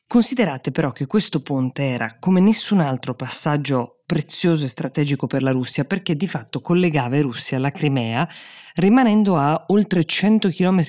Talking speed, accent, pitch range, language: 160 wpm, native, 130-165 Hz, Italian